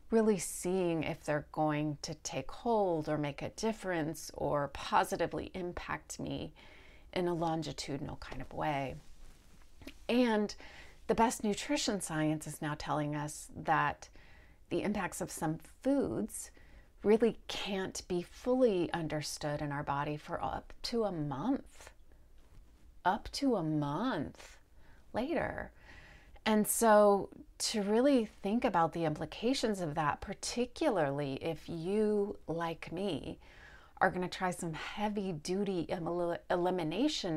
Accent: American